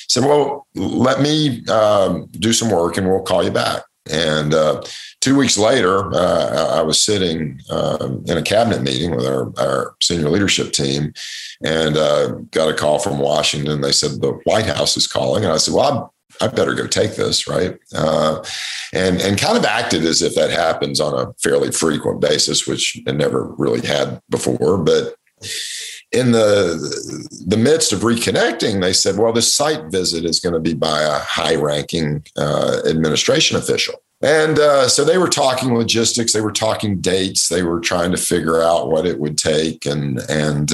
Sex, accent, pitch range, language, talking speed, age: male, American, 75-115 Hz, English, 185 wpm, 50-69